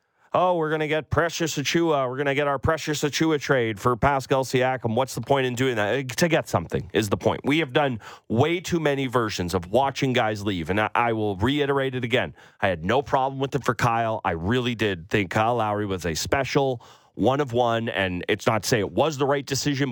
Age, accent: 30-49, American